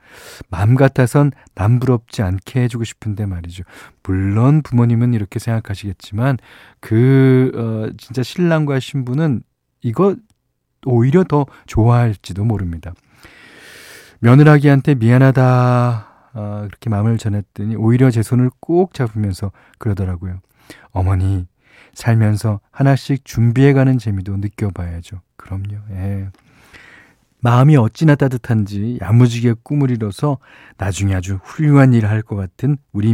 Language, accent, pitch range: Korean, native, 100-130 Hz